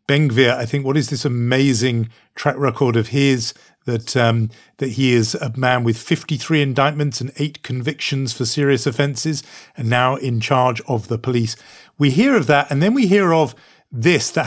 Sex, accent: male, British